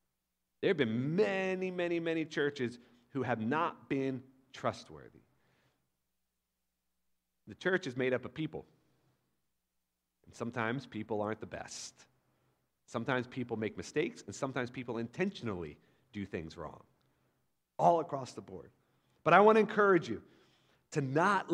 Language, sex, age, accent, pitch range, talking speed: English, male, 40-59, American, 115-175 Hz, 135 wpm